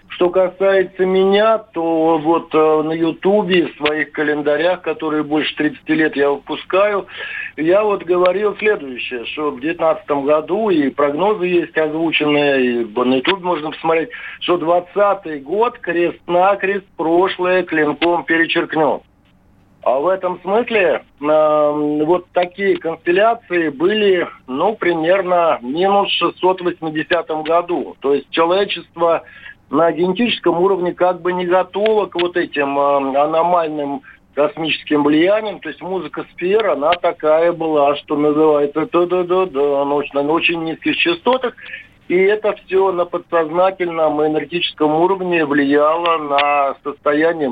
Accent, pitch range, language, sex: native, 150-185 Hz, Russian, male